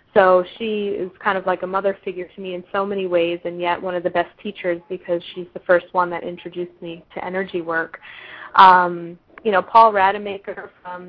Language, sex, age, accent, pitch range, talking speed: English, female, 20-39, American, 180-200 Hz, 210 wpm